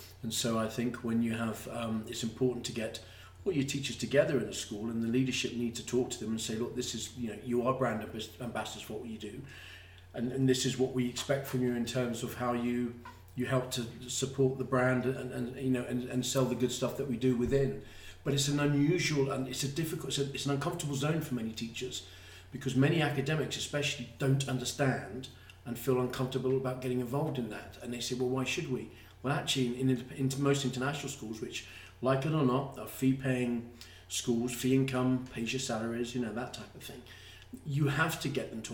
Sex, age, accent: male, 40-59, British